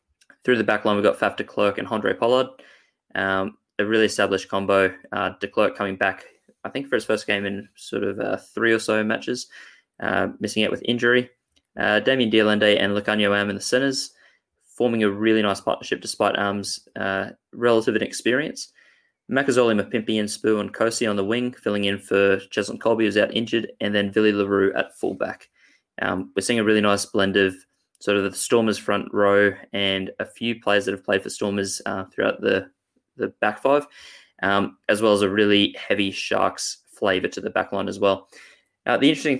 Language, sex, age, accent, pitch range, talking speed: English, male, 20-39, Australian, 100-115 Hz, 200 wpm